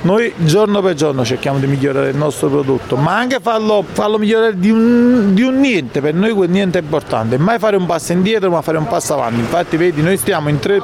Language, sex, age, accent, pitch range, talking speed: Italian, male, 40-59, native, 150-200 Hz, 225 wpm